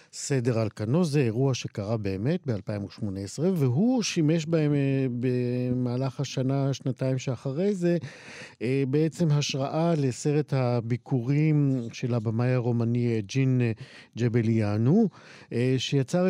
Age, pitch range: 50-69, 120-150 Hz